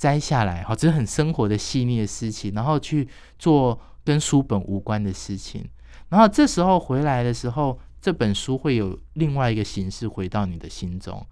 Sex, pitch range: male, 100-150 Hz